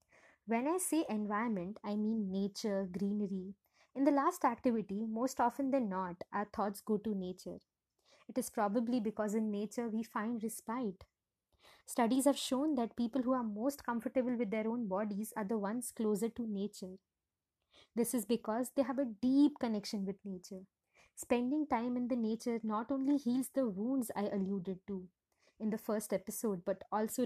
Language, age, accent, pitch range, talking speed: English, 20-39, Indian, 205-245 Hz, 170 wpm